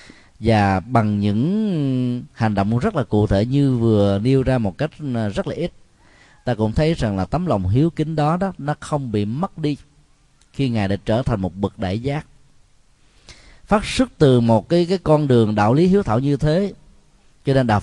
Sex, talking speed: male, 200 wpm